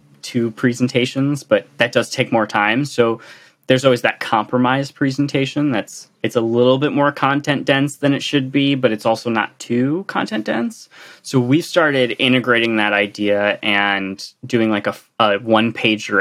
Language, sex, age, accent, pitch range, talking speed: English, male, 20-39, American, 105-130 Hz, 160 wpm